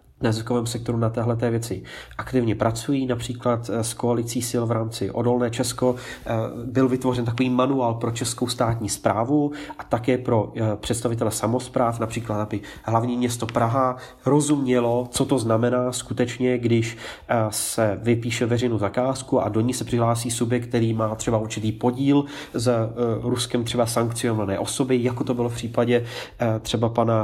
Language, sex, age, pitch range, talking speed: Czech, male, 30-49, 115-125 Hz, 145 wpm